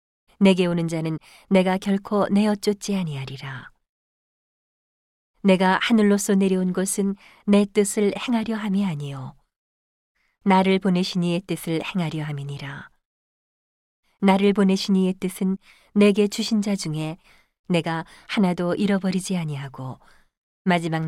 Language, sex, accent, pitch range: Korean, female, native, 160-205 Hz